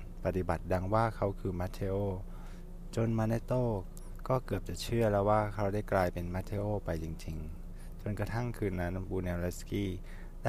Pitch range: 90-105 Hz